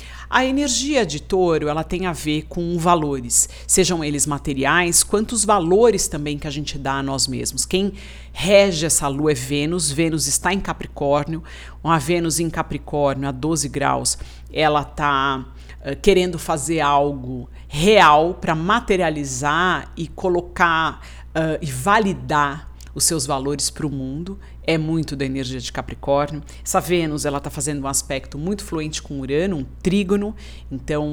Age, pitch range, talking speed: 50-69, 140-175 Hz, 150 wpm